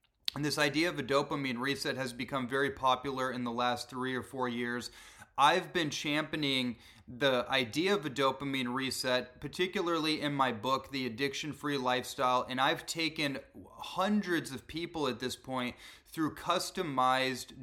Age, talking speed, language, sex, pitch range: 30-49, 155 wpm, English, male, 125-145 Hz